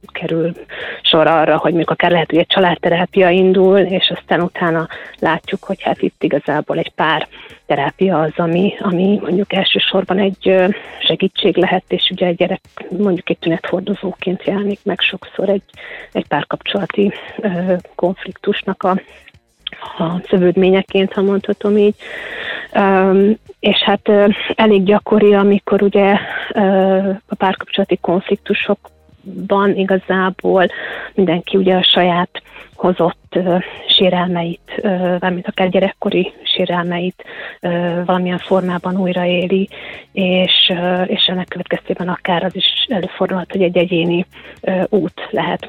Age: 30-49